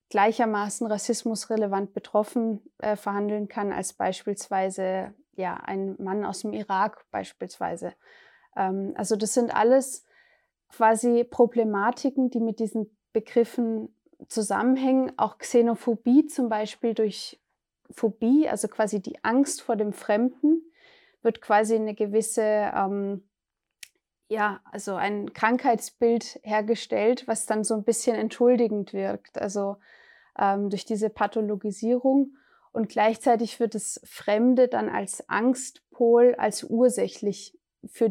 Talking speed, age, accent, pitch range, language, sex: 115 wpm, 20-39, German, 210-250 Hz, German, female